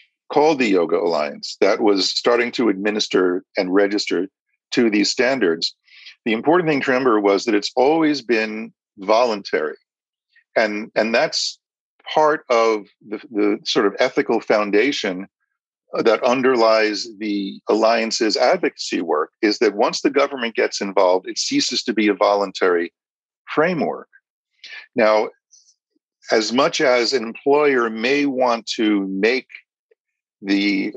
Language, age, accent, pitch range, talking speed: English, 50-69, American, 100-130 Hz, 130 wpm